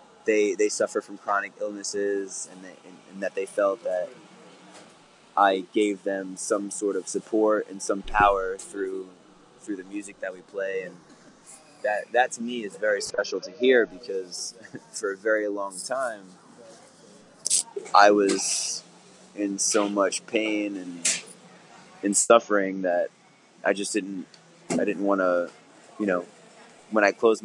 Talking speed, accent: 150 wpm, American